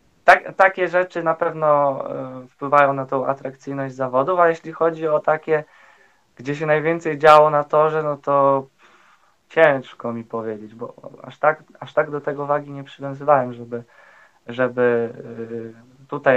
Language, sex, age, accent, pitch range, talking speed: Polish, male, 20-39, native, 125-155 Hz, 135 wpm